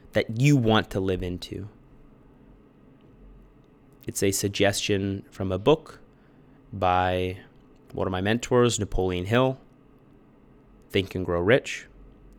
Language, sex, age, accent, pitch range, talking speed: English, male, 30-49, American, 95-130 Hz, 110 wpm